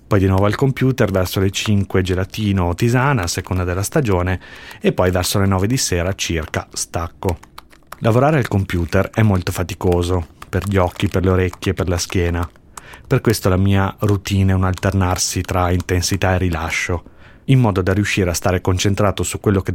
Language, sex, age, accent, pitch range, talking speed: Italian, male, 30-49, native, 90-105 Hz, 190 wpm